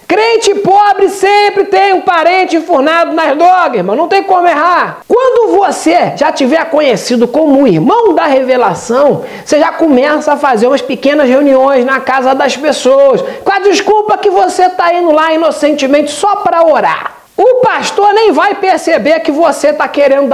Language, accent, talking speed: Portuguese, Brazilian, 160 wpm